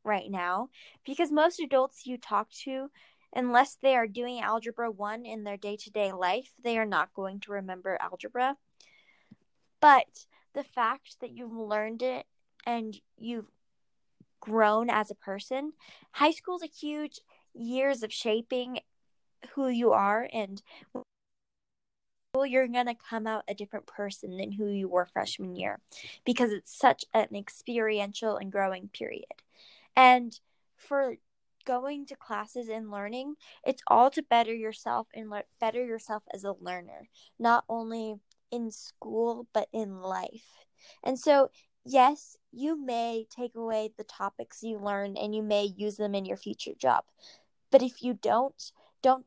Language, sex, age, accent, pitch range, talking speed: English, female, 10-29, American, 205-255 Hz, 150 wpm